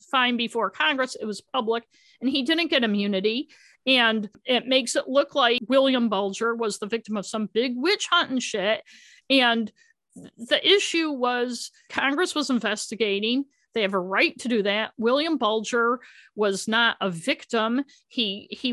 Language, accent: English, American